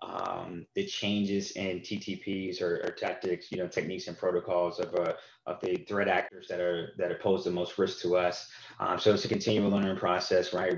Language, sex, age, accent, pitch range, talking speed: English, male, 20-39, American, 90-115 Hz, 200 wpm